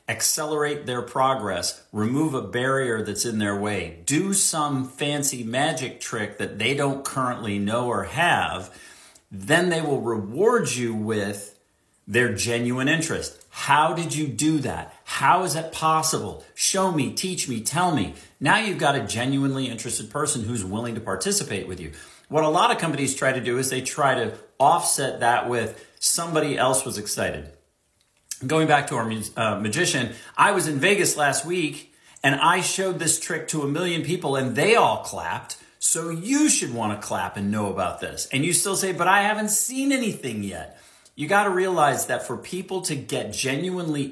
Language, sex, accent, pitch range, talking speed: English, male, American, 110-165 Hz, 180 wpm